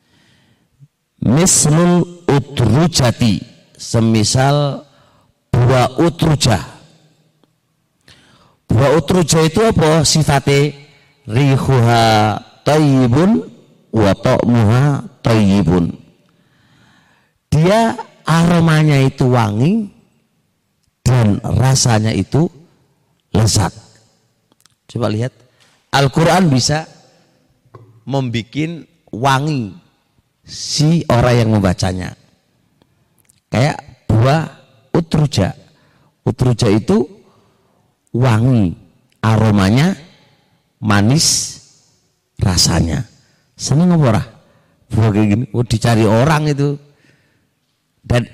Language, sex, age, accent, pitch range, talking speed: Indonesian, male, 40-59, native, 115-155 Hz, 60 wpm